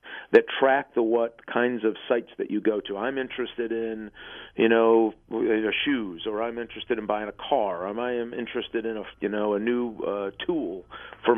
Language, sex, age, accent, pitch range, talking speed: English, male, 50-69, American, 110-125 Hz, 190 wpm